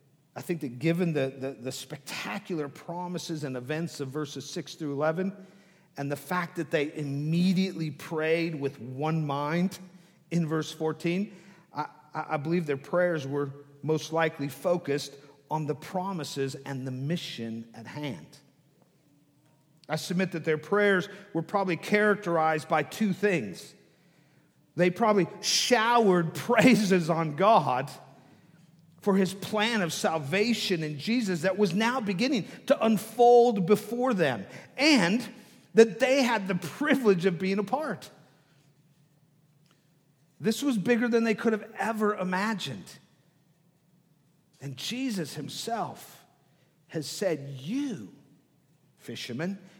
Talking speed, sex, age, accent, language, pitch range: 125 wpm, male, 50-69, American, English, 150-200 Hz